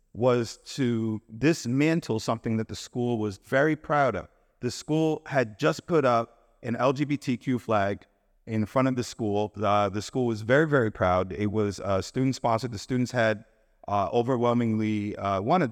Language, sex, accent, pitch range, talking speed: English, male, American, 110-145 Hz, 170 wpm